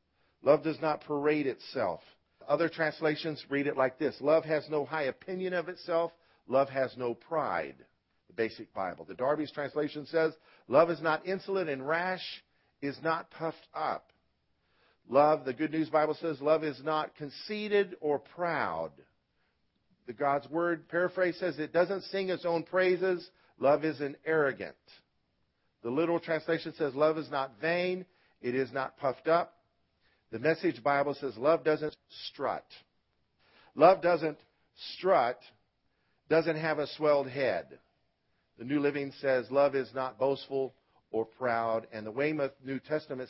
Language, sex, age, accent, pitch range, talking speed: English, male, 50-69, American, 135-165 Hz, 150 wpm